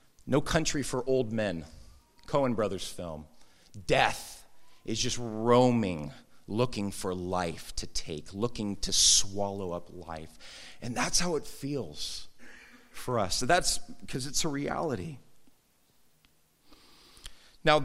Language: English